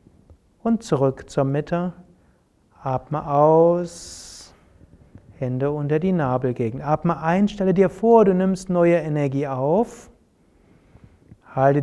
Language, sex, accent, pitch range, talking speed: German, male, German, 135-180 Hz, 105 wpm